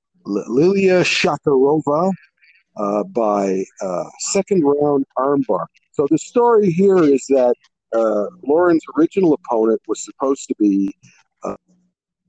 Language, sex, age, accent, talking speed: English, male, 50-69, American, 115 wpm